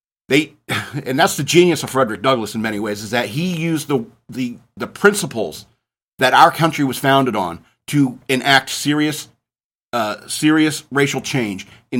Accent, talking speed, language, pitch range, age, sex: American, 165 wpm, English, 120-155 Hz, 50-69, male